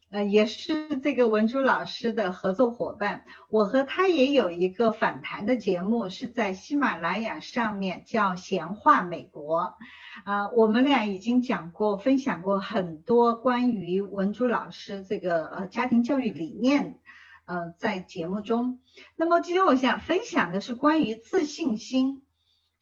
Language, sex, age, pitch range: Chinese, female, 50-69, 200-290 Hz